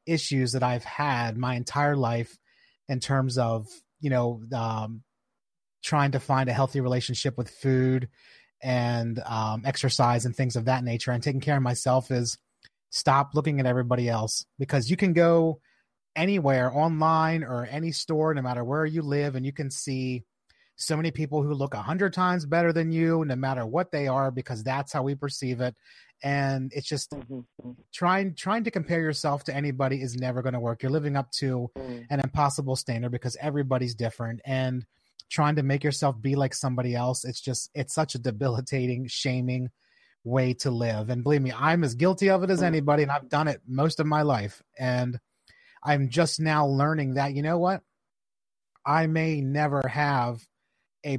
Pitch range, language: 125-150 Hz, English